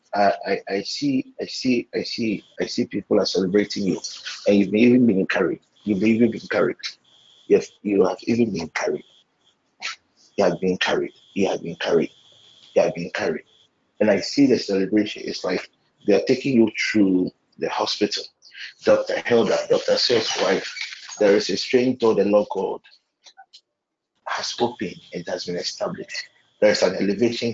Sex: male